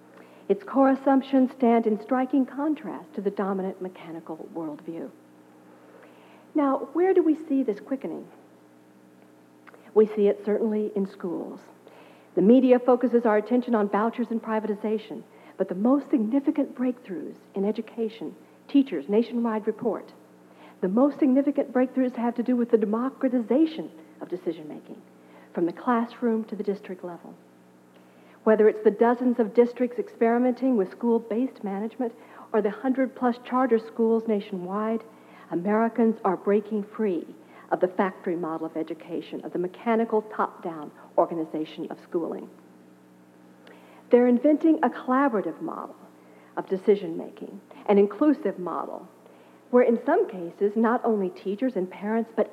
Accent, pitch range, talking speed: American, 165-245 Hz, 135 wpm